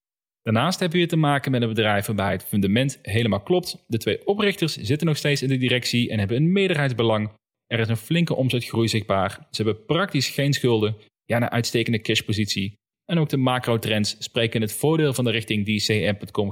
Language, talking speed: Dutch, 200 wpm